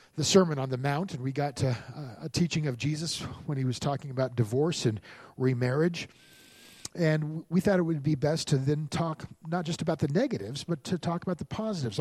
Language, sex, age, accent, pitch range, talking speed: English, male, 40-59, American, 130-165 Hz, 215 wpm